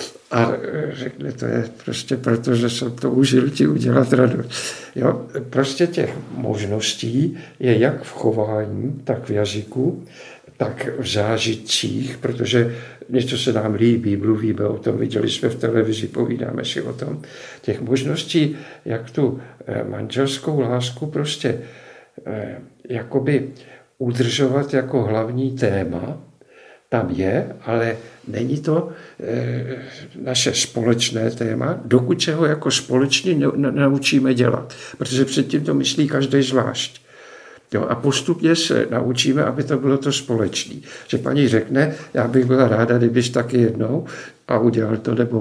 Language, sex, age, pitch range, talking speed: Czech, male, 50-69, 115-135 Hz, 130 wpm